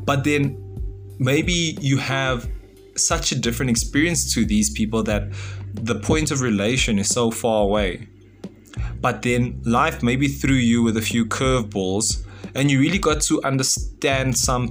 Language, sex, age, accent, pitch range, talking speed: English, male, 20-39, South African, 100-135 Hz, 155 wpm